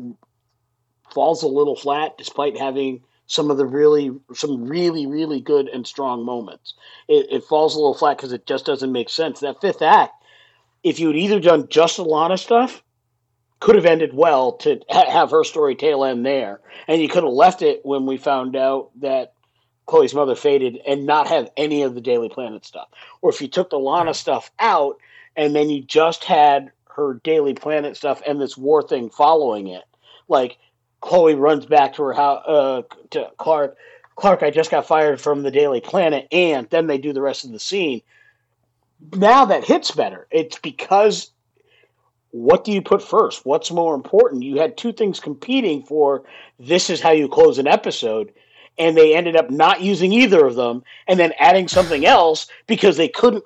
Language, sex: English, male